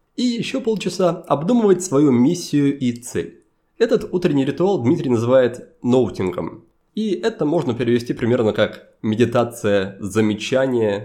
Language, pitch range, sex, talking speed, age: Russian, 120-180 Hz, male, 120 wpm, 20-39